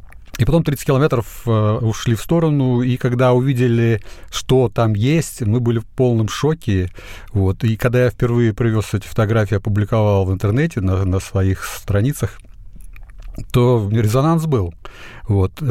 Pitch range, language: 105-130 Hz, Russian